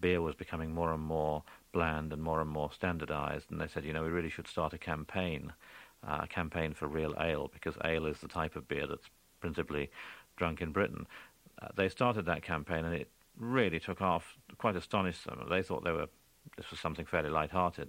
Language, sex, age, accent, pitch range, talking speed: English, male, 50-69, British, 80-90 Hz, 210 wpm